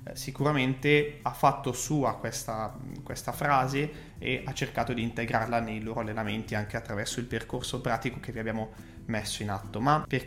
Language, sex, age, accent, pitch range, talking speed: Italian, male, 20-39, native, 115-155 Hz, 165 wpm